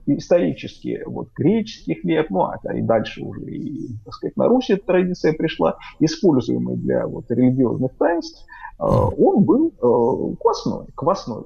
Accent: native